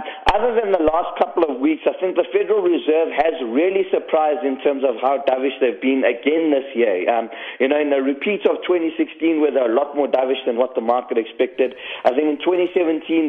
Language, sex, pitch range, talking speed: English, male, 135-165 Hz, 220 wpm